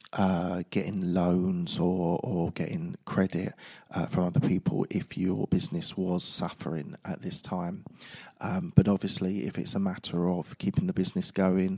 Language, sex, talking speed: English, male, 160 wpm